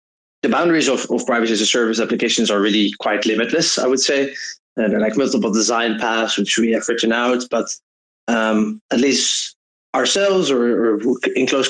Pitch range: 110-130 Hz